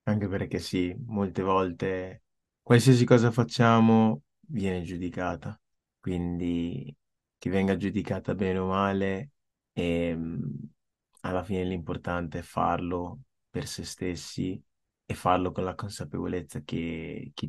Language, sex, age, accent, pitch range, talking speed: Italian, male, 20-39, native, 90-105 Hz, 115 wpm